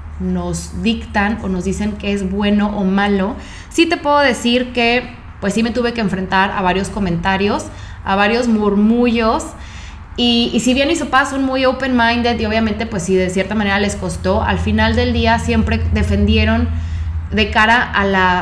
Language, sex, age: Spanish, female, 20-39